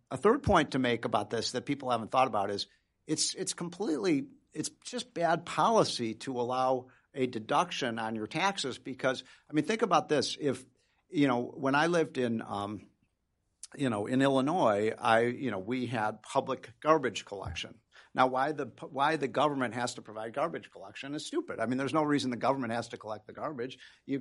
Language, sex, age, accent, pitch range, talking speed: English, male, 50-69, American, 120-145 Hz, 195 wpm